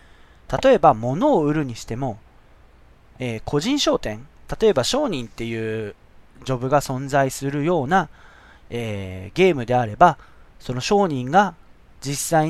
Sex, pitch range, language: male, 100-155 Hz, Japanese